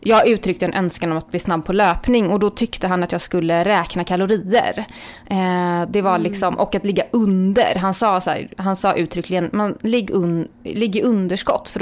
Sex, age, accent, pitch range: female, 20-39, native, 180-225 Hz